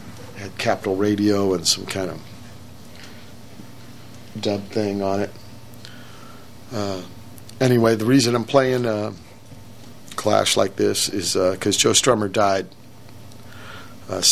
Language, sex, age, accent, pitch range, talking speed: English, male, 50-69, American, 105-120 Hz, 115 wpm